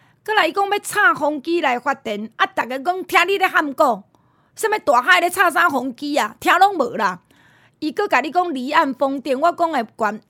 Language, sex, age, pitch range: Chinese, female, 30-49, 240-355 Hz